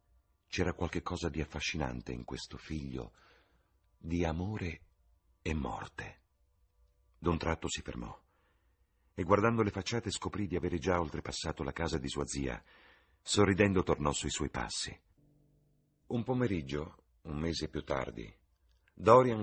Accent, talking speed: native, 125 wpm